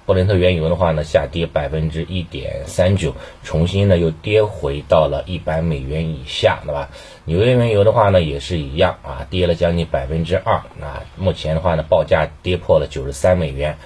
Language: Chinese